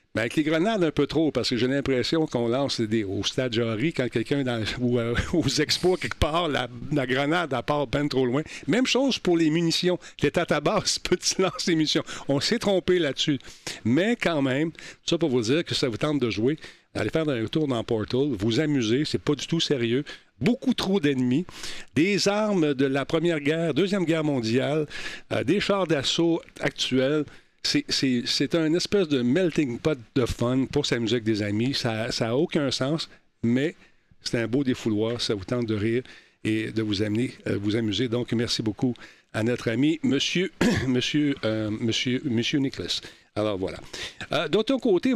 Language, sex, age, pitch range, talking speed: French, male, 50-69, 120-160 Hz, 195 wpm